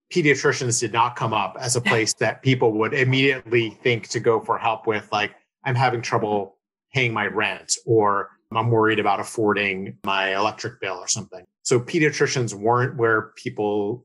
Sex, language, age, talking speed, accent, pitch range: male, English, 30-49, 170 wpm, American, 110-135 Hz